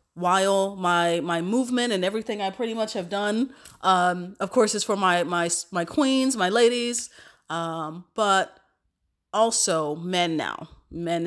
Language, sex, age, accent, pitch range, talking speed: English, female, 30-49, American, 160-195 Hz, 150 wpm